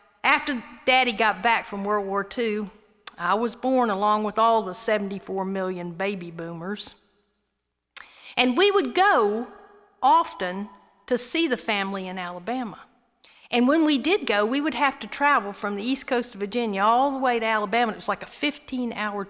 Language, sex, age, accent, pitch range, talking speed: English, female, 50-69, American, 195-250 Hz, 175 wpm